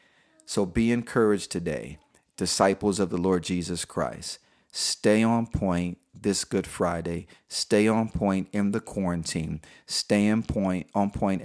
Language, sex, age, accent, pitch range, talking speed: English, male, 40-59, American, 85-105 Hz, 140 wpm